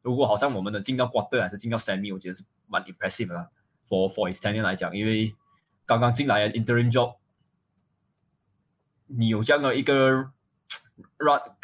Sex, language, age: male, Chinese, 20-39